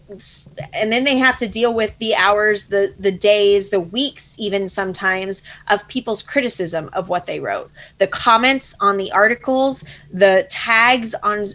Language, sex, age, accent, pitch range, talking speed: English, female, 20-39, American, 195-245 Hz, 160 wpm